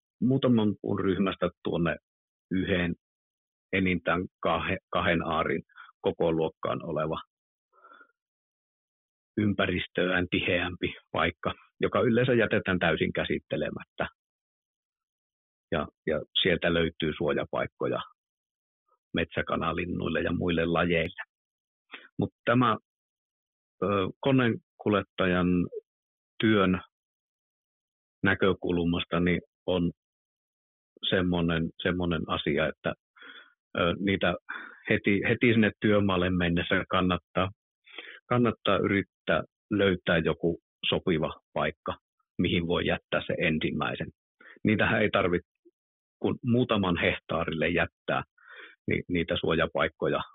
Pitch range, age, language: 85-105 Hz, 50-69, Finnish